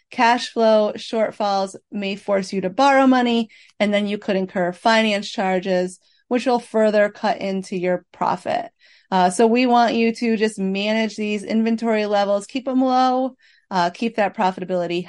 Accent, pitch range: American, 195-235 Hz